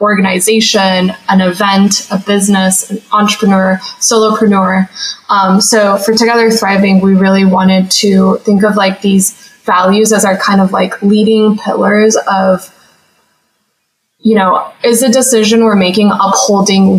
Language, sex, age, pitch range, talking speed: English, female, 20-39, 190-220 Hz, 135 wpm